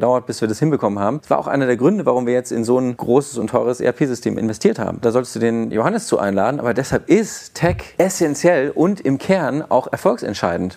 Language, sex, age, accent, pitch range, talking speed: German, male, 40-59, German, 115-145 Hz, 230 wpm